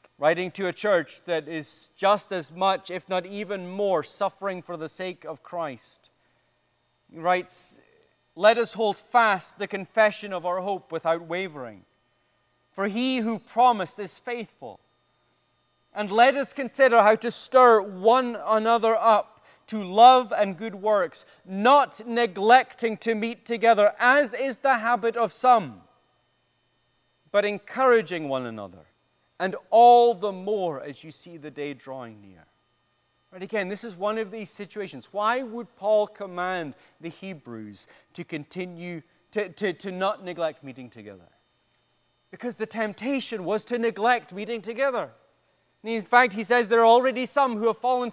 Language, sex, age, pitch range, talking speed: English, male, 30-49, 160-235 Hz, 150 wpm